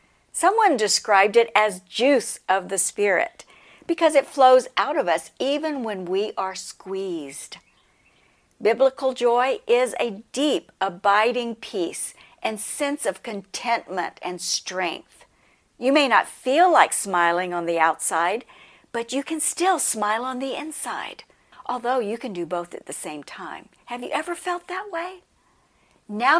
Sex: female